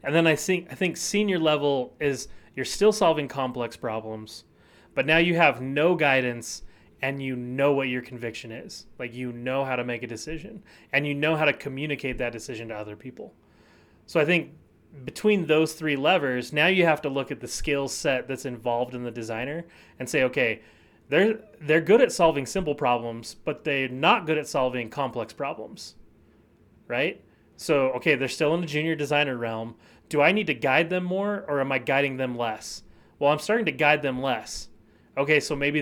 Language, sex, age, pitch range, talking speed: English, male, 30-49, 120-155 Hz, 200 wpm